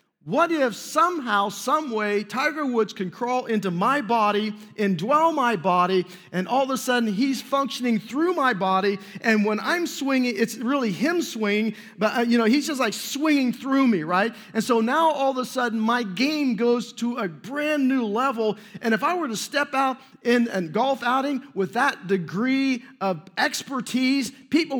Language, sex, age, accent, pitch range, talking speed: English, male, 40-59, American, 220-275 Hz, 180 wpm